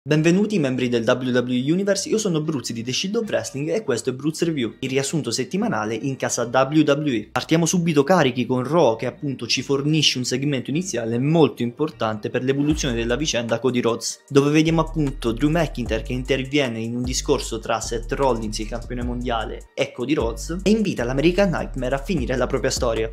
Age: 20-39